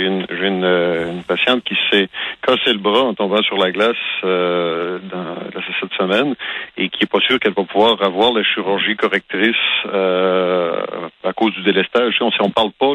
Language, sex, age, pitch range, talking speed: French, male, 50-69, 95-110 Hz, 200 wpm